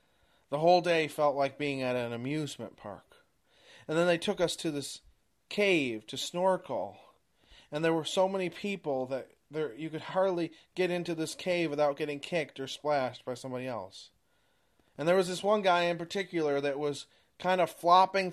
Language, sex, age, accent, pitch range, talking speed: English, male, 30-49, American, 125-165 Hz, 180 wpm